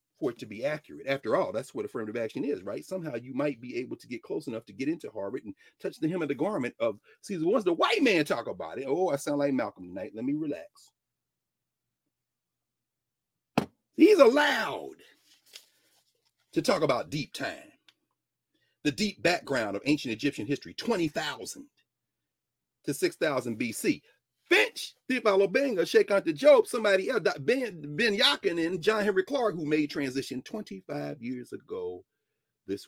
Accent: American